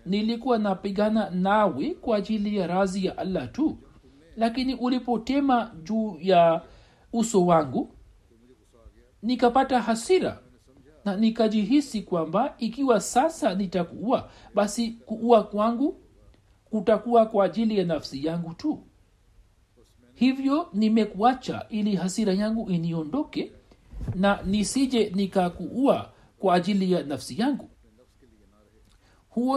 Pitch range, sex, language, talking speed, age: 145-225 Hz, male, Swahili, 100 wpm, 60-79